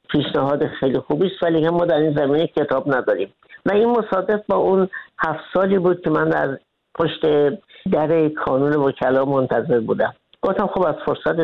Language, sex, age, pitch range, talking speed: Persian, female, 60-79, 145-175 Hz, 170 wpm